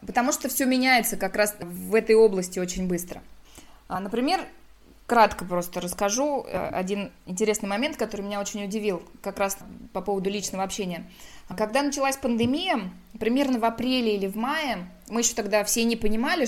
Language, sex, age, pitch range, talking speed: Russian, female, 20-39, 190-235 Hz, 155 wpm